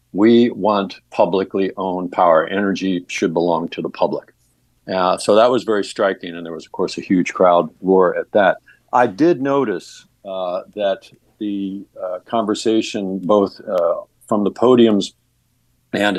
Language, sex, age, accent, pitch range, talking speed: English, male, 50-69, American, 95-120 Hz, 155 wpm